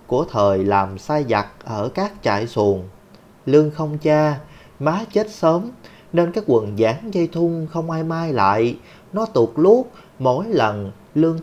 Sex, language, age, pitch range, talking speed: male, Vietnamese, 30-49, 115-175 Hz, 165 wpm